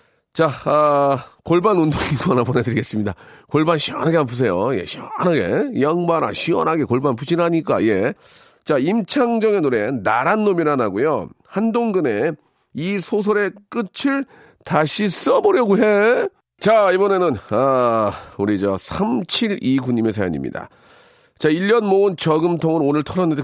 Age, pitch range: 40-59, 115-175 Hz